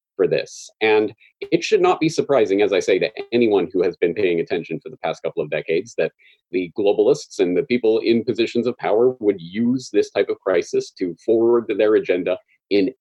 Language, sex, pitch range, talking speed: English, male, 345-425 Hz, 205 wpm